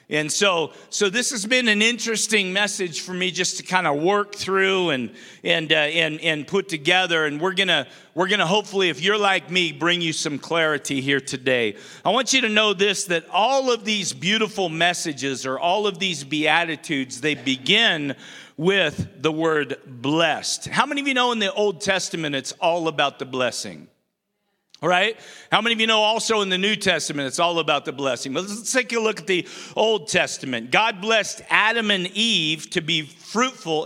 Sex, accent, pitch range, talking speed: male, American, 160-210 Hz, 195 wpm